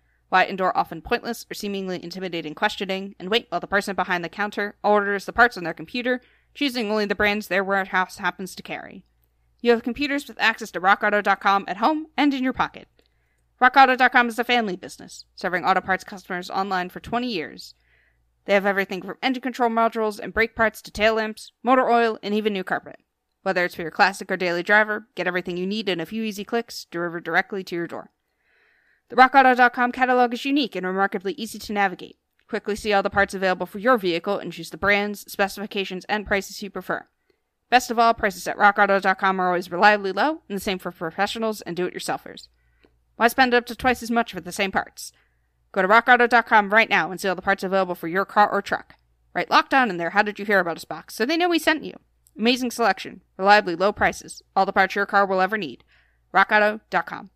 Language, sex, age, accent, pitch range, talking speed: English, female, 20-39, American, 185-230 Hz, 210 wpm